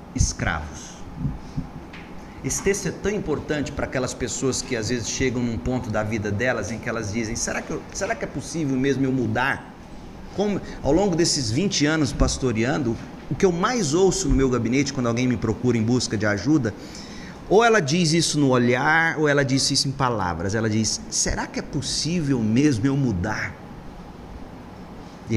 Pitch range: 115-155 Hz